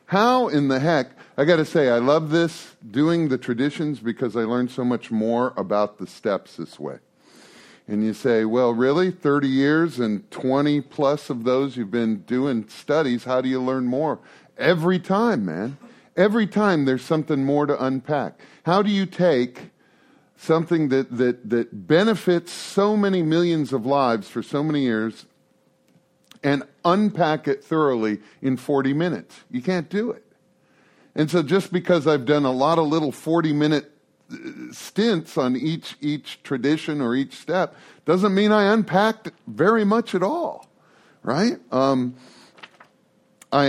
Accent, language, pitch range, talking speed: American, English, 125-170 Hz, 155 wpm